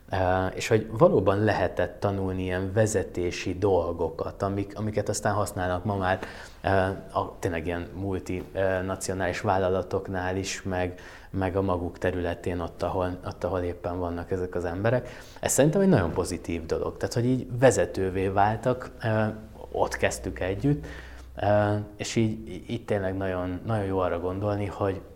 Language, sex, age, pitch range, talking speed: Hungarian, male, 20-39, 90-105 Hz, 140 wpm